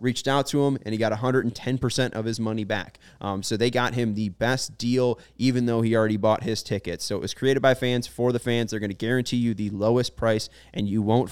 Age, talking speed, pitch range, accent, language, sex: 20-39, 250 wpm, 105-135 Hz, American, English, male